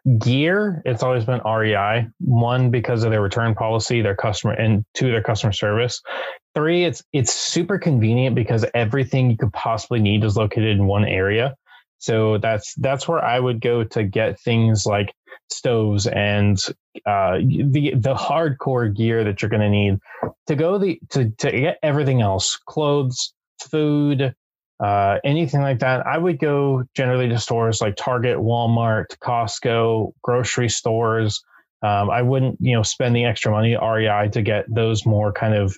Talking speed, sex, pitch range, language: 165 wpm, male, 105-130 Hz, English